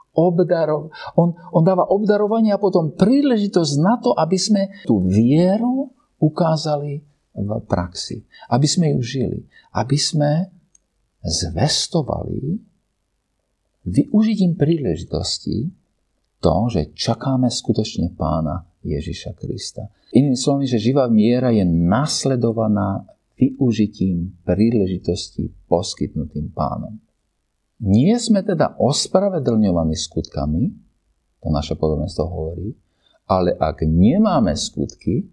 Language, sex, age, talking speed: Slovak, male, 50-69, 95 wpm